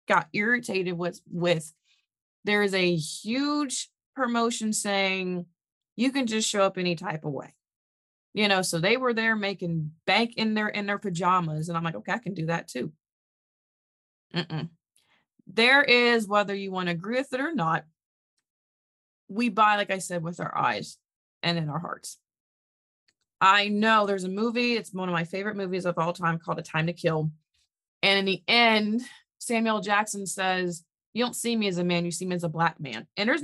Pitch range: 170-225 Hz